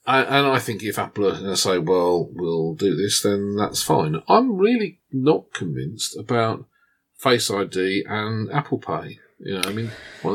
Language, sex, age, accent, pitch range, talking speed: English, male, 40-59, British, 95-130 Hz, 185 wpm